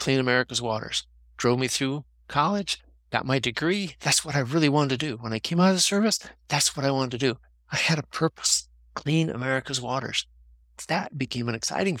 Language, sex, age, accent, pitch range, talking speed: English, male, 50-69, American, 110-155 Hz, 205 wpm